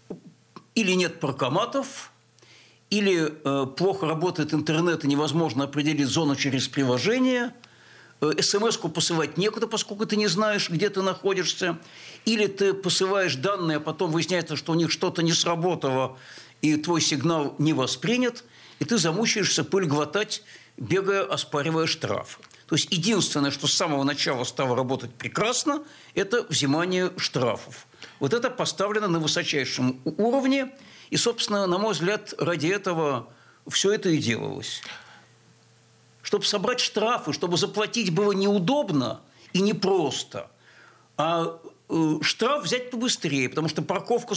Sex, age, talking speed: male, 60-79, 130 wpm